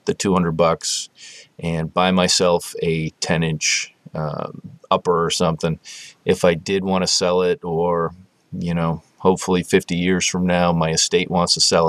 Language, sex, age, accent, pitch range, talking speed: English, male, 30-49, American, 80-90 Hz, 165 wpm